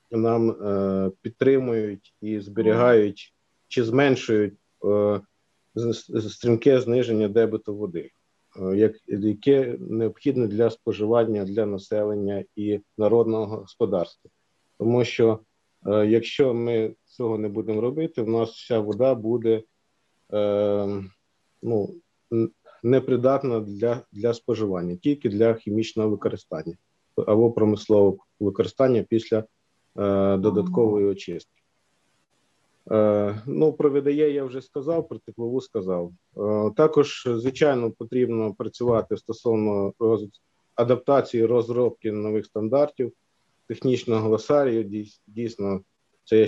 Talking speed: 95 wpm